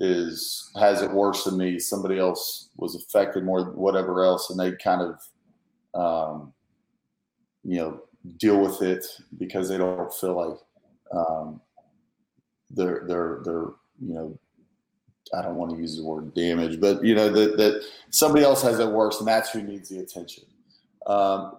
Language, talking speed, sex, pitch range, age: English, 165 wpm, male, 90-105 Hz, 30-49